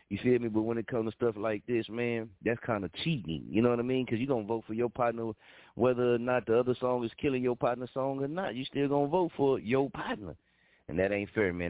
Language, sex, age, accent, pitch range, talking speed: English, male, 30-49, American, 100-125 Hz, 285 wpm